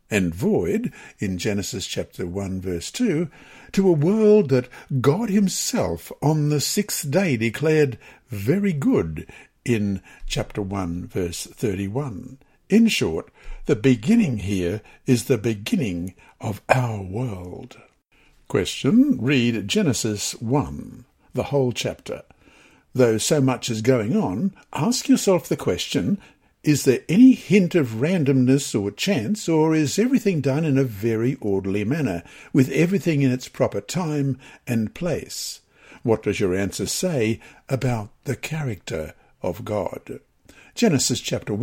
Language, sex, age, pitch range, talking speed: English, male, 60-79, 110-155 Hz, 130 wpm